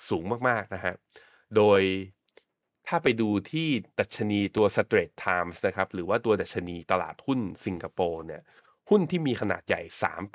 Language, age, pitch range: Thai, 20-39, 90-120 Hz